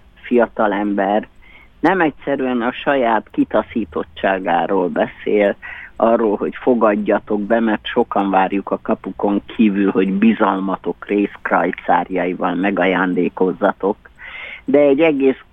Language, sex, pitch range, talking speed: Hungarian, male, 100-125 Hz, 95 wpm